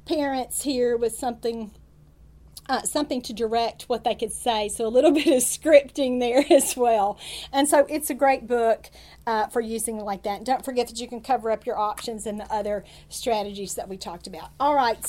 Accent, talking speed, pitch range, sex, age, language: American, 205 wpm, 235-310 Hz, female, 40-59, English